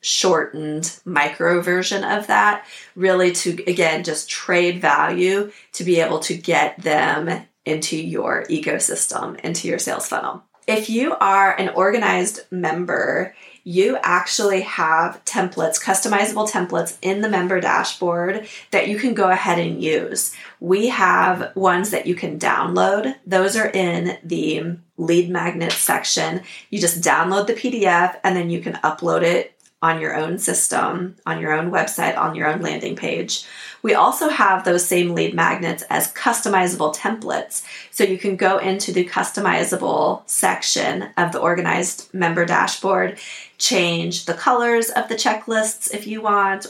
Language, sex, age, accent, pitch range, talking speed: English, female, 20-39, American, 175-205 Hz, 150 wpm